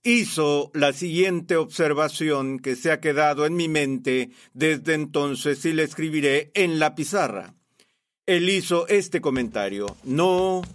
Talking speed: 135 wpm